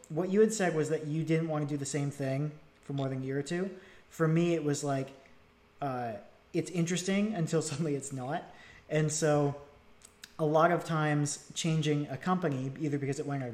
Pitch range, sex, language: 130-160 Hz, male, English